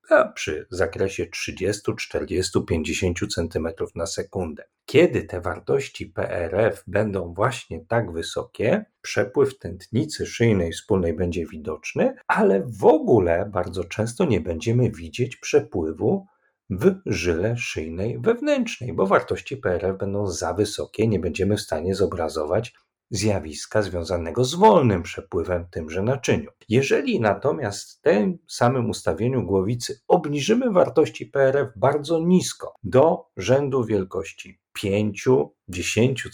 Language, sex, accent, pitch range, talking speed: Polish, male, native, 95-165 Hz, 115 wpm